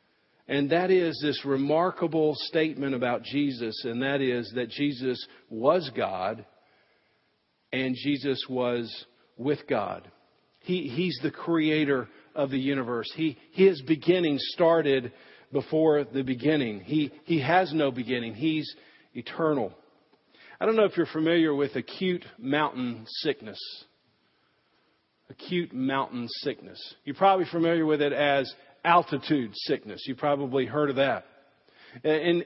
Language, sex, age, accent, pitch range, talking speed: English, male, 50-69, American, 145-185 Hz, 125 wpm